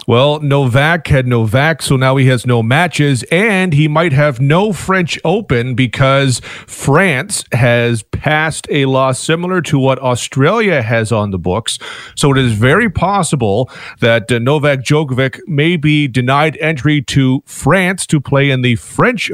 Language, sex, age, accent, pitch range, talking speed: English, male, 40-59, American, 130-150 Hz, 160 wpm